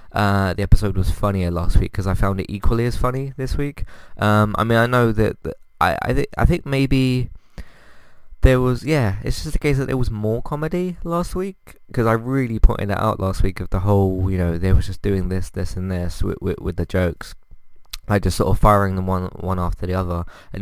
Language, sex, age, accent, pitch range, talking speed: English, male, 20-39, British, 90-110 Hz, 235 wpm